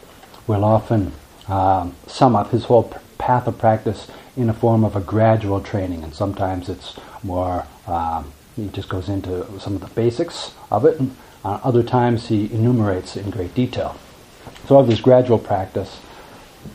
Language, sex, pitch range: English, male, 95-115 Hz